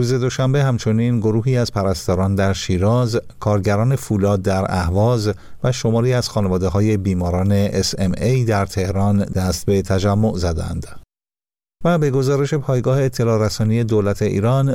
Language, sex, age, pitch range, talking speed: Persian, male, 50-69, 95-120 Hz, 140 wpm